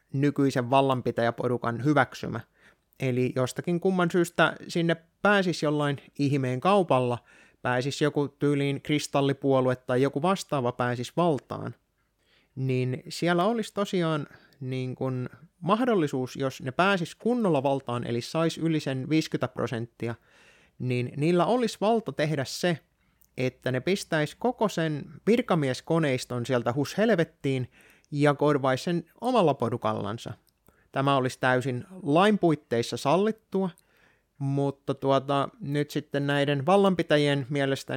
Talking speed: 110 wpm